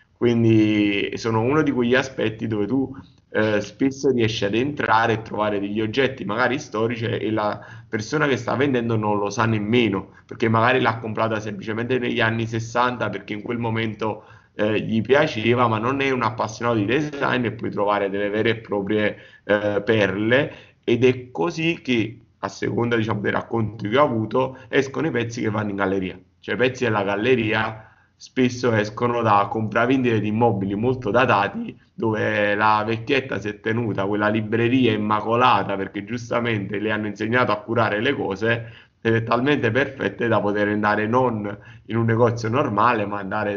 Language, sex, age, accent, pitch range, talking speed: Italian, male, 30-49, native, 105-120 Hz, 170 wpm